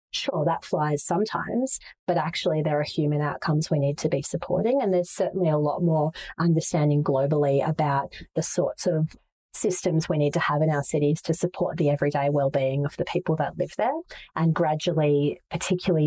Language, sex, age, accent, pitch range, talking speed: English, female, 30-49, Australian, 145-175 Hz, 185 wpm